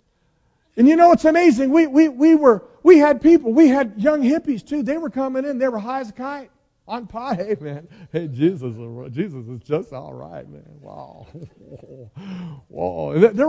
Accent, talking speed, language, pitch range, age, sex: American, 185 wpm, English, 175-275 Hz, 50-69, male